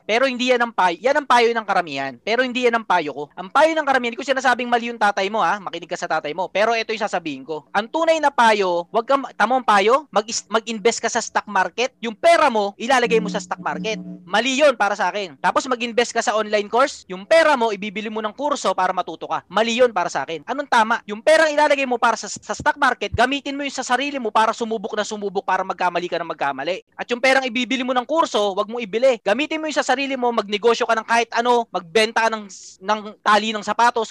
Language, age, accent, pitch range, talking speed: Filipino, 20-39, native, 205-255 Hz, 240 wpm